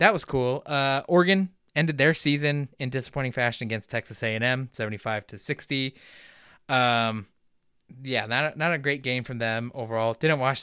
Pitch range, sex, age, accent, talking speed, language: 115-150 Hz, male, 20-39, American, 160 wpm, English